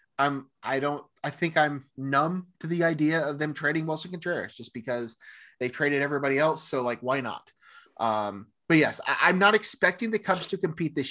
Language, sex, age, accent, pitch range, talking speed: English, male, 30-49, American, 115-150 Hz, 210 wpm